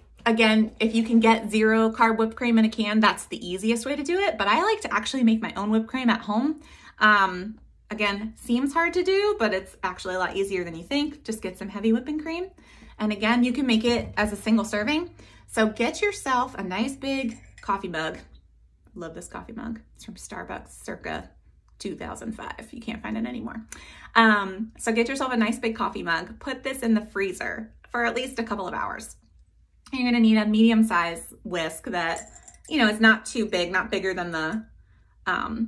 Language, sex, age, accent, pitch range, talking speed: English, female, 20-39, American, 200-240 Hz, 210 wpm